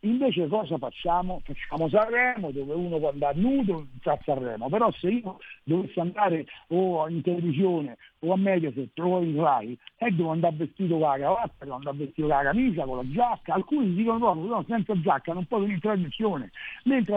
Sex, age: male, 60-79